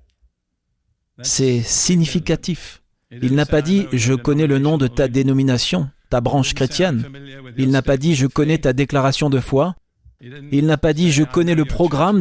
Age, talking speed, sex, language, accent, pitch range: 40-59, 165 wpm, male, French, French, 115-150 Hz